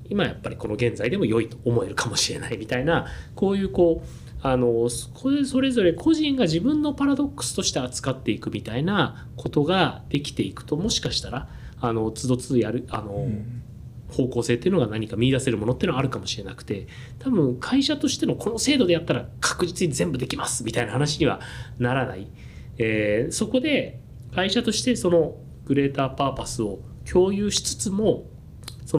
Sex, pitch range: male, 115-150 Hz